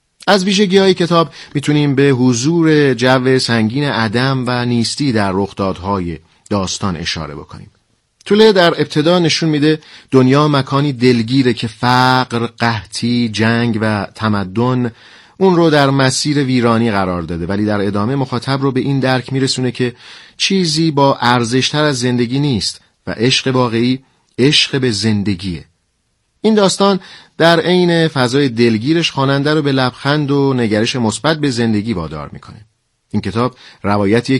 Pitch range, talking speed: 110-145 Hz, 140 wpm